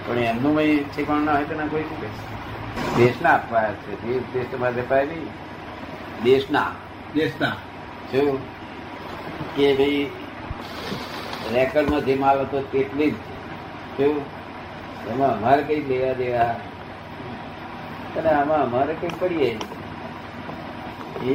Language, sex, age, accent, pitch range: Gujarati, male, 60-79, native, 120-145 Hz